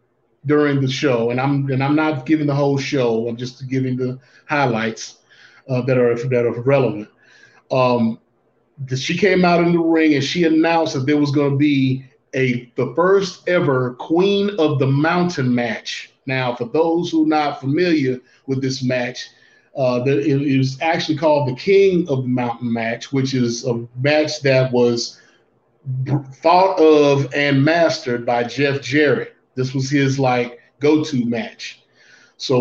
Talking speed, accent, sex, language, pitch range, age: 165 wpm, American, male, English, 125-155 Hz, 30-49